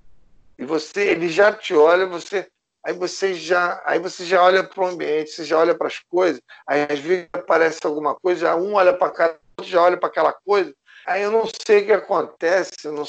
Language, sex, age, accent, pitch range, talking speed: Portuguese, male, 50-69, Brazilian, 125-180 Hz, 215 wpm